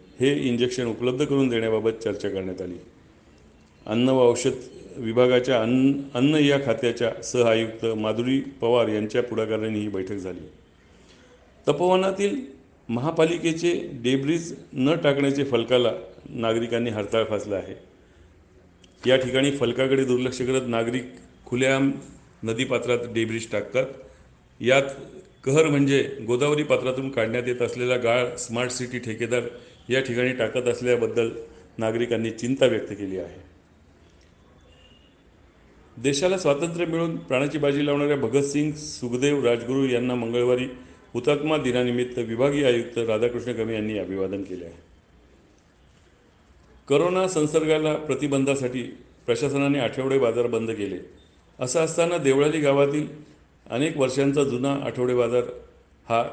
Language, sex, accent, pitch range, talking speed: Marathi, male, native, 110-140 Hz, 100 wpm